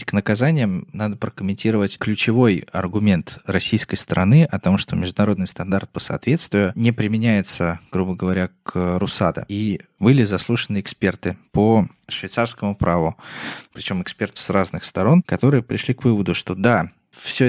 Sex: male